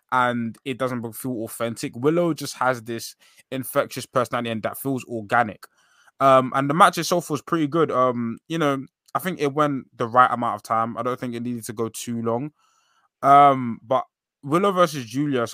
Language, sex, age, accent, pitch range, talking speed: English, male, 20-39, British, 110-135 Hz, 195 wpm